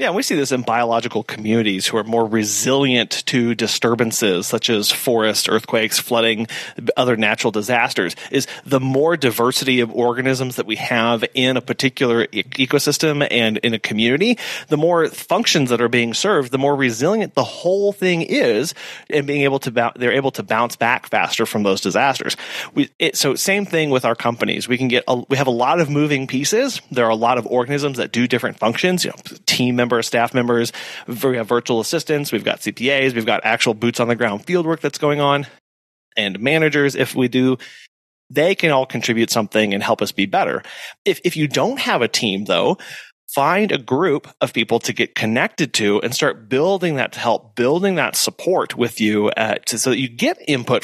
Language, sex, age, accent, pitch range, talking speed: English, male, 30-49, American, 115-140 Hz, 205 wpm